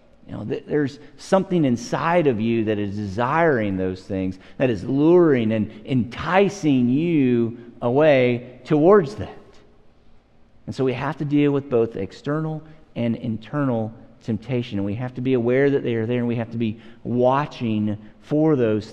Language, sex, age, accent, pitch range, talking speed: English, male, 50-69, American, 120-180 Hz, 155 wpm